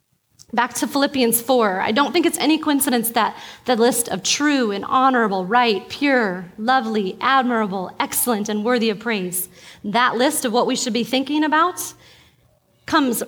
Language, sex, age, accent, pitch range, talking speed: English, female, 30-49, American, 220-290 Hz, 165 wpm